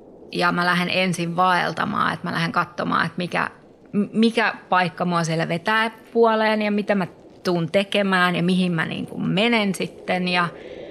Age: 20-39